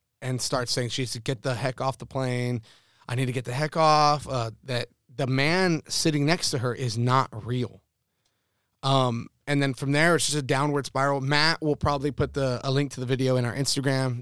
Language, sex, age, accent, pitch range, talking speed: English, male, 30-49, American, 125-160 Hz, 225 wpm